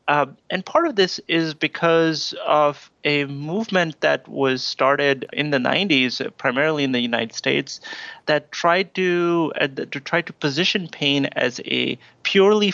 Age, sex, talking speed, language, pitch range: 30-49, male, 155 wpm, English, 130-160 Hz